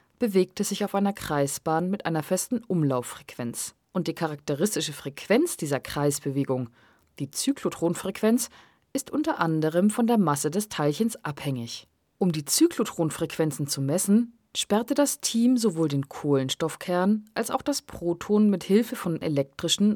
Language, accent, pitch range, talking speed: German, German, 150-220 Hz, 140 wpm